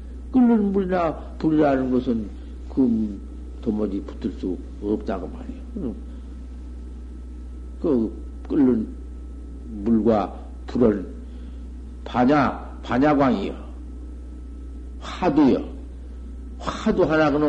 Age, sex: 50-69, male